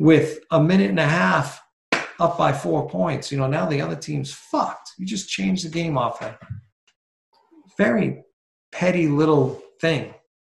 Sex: male